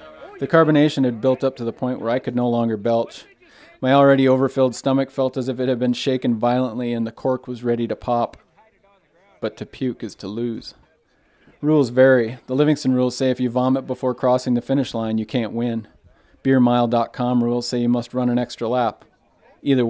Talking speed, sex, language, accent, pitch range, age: 200 wpm, male, English, American, 115-130 Hz, 40-59